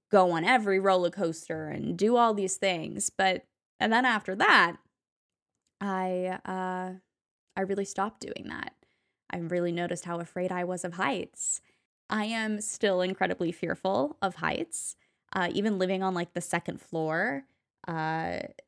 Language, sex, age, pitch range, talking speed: English, female, 10-29, 180-235 Hz, 150 wpm